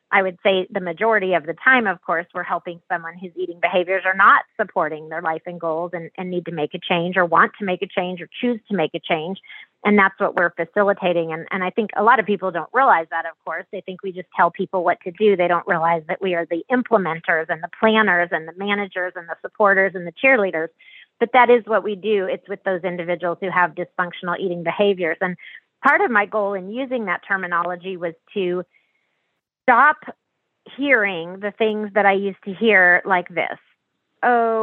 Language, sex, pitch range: English, female, 175-215 Hz